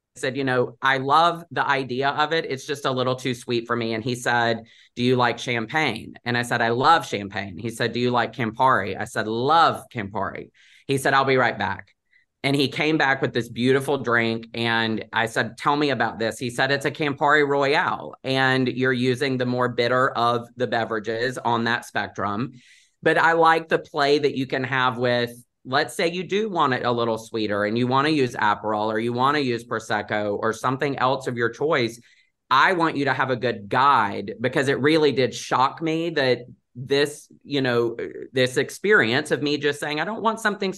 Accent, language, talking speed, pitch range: American, English, 210 wpm, 115-140 Hz